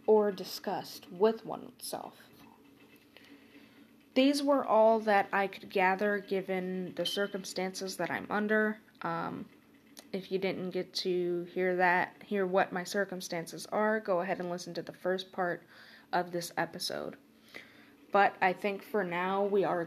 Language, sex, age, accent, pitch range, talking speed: English, female, 20-39, American, 175-205 Hz, 145 wpm